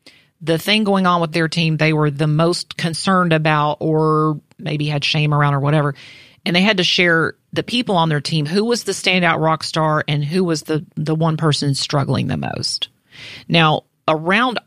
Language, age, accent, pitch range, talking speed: English, 40-59, American, 150-175 Hz, 195 wpm